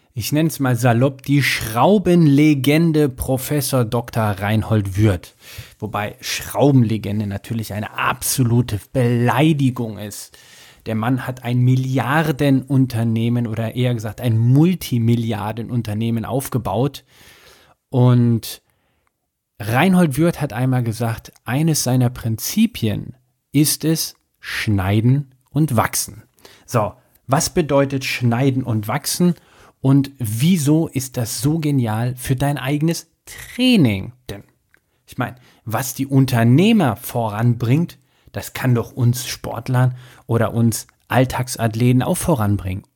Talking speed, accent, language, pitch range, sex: 105 wpm, German, German, 115-140 Hz, male